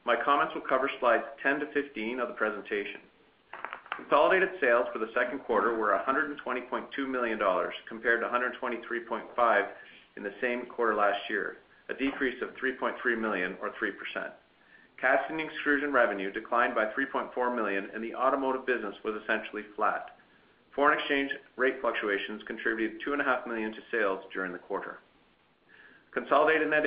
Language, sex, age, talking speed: English, male, 40-59, 165 wpm